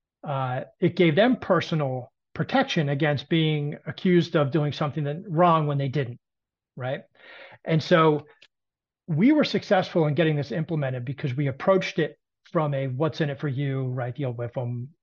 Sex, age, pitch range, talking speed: male, 40-59, 145-185 Hz, 170 wpm